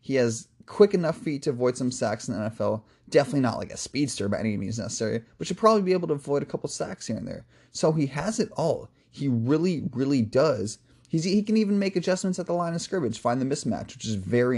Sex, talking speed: male, 245 wpm